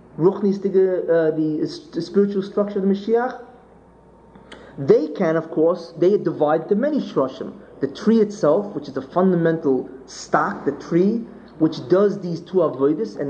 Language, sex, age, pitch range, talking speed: English, male, 30-49, 160-220 Hz, 155 wpm